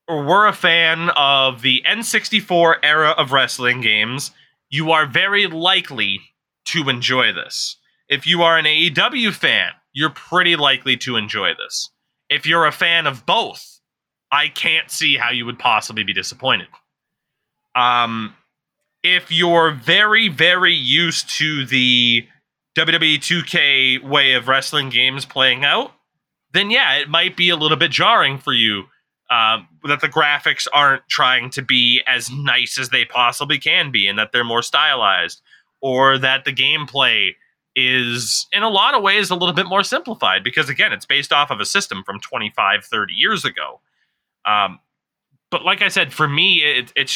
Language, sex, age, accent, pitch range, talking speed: English, male, 20-39, American, 125-165 Hz, 165 wpm